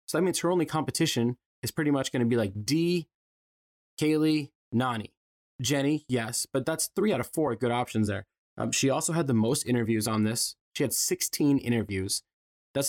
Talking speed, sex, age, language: 190 wpm, male, 20-39, English